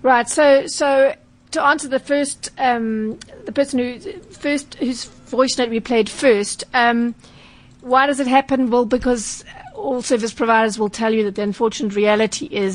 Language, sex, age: English, female, 40-59